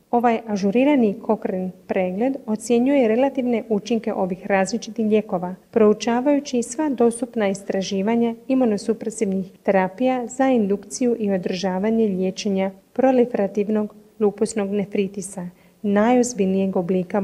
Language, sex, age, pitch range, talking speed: Croatian, female, 40-59, 200-235 Hz, 90 wpm